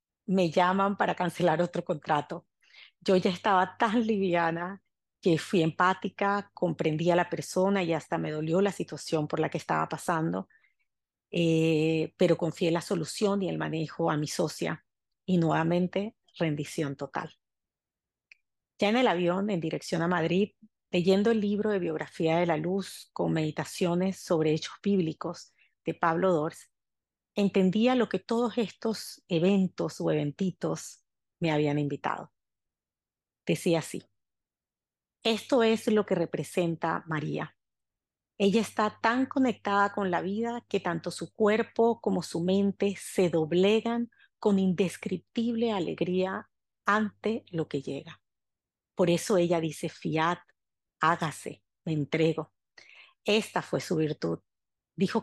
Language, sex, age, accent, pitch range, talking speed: Spanish, female, 40-59, American, 160-200 Hz, 135 wpm